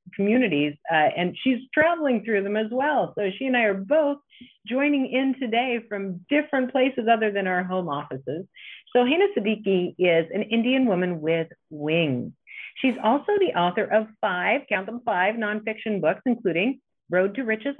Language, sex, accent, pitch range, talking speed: English, female, American, 175-260 Hz, 170 wpm